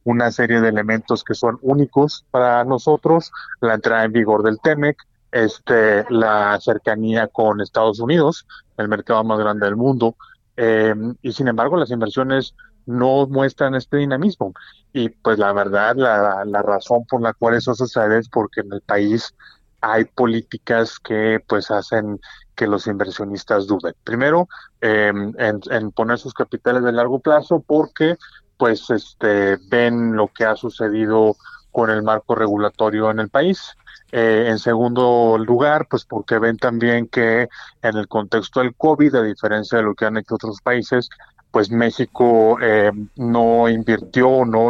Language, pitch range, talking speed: Spanish, 110-125 Hz, 155 wpm